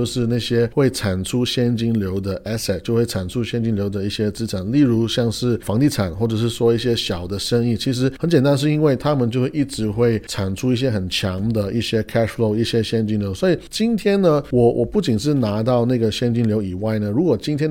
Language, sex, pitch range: Chinese, male, 100-125 Hz